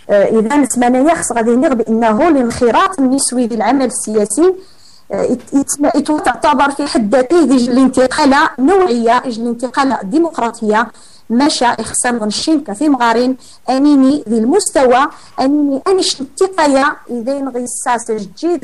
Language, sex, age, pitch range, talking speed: Arabic, female, 40-59, 235-300 Hz, 115 wpm